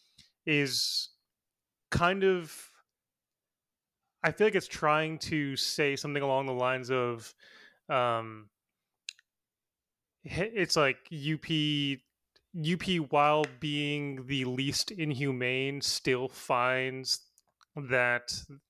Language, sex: English, male